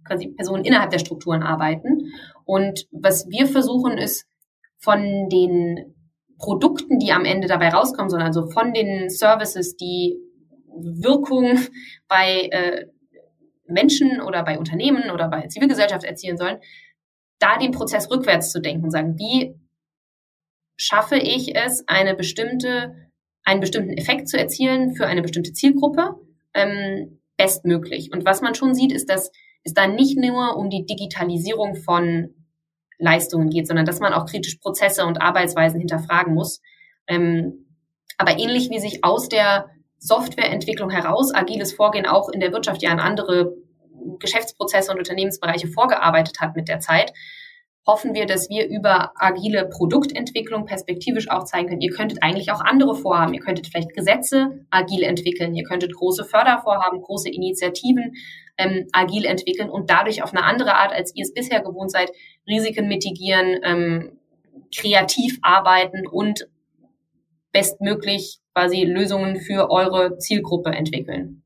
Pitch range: 175-220 Hz